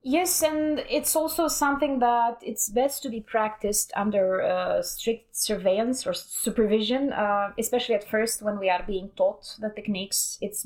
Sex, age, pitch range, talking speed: female, 20-39, 195-245 Hz, 165 wpm